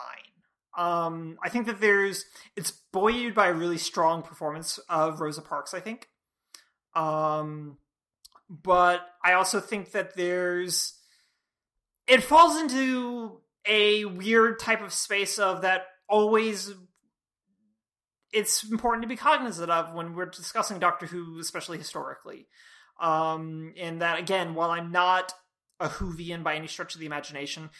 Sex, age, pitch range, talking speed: male, 30-49, 165-210 Hz, 135 wpm